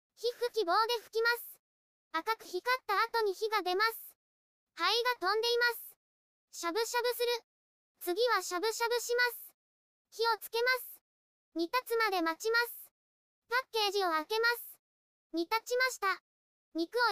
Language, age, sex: Japanese, 20-39, male